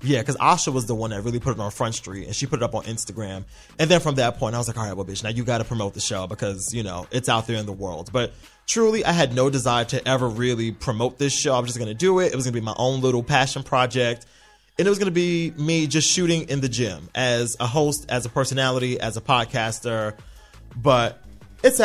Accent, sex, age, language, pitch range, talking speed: American, male, 20-39, English, 115-155 Hz, 275 wpm